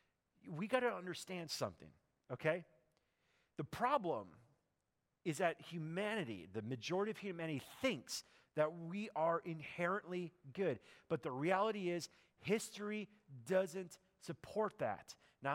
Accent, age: American, 40-59